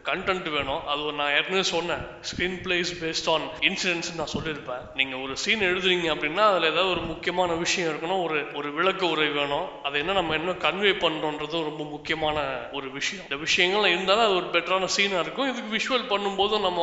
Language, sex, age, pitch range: Thai, male, 20-39, 150-190 Hz